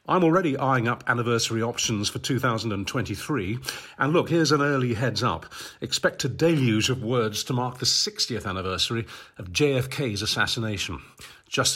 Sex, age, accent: male, 50-69, British